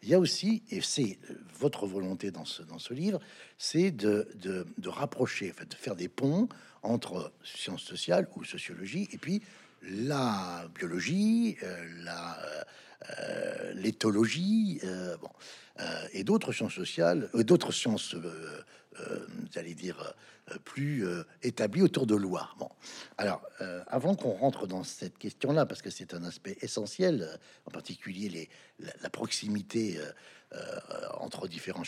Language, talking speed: French, 160 wpm